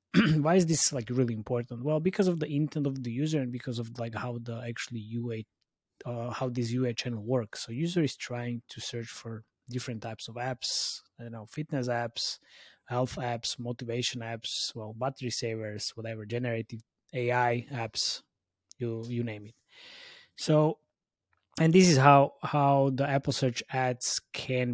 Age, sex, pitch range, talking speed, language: 20-39, male, 115-140 Hz, 165 wpm, English